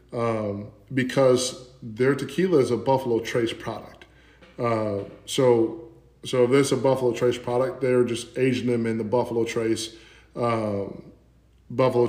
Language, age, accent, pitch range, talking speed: English, 10-29, American, 115-130 Hz, 145 wpm